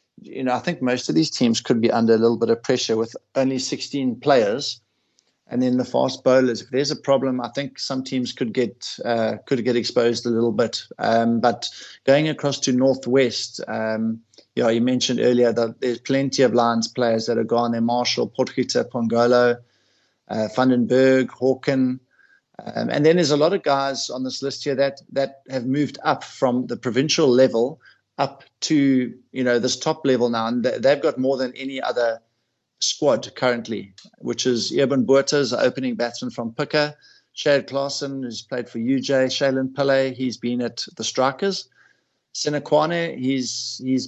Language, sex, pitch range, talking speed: English, male, 120-135 Hz, 180 wpm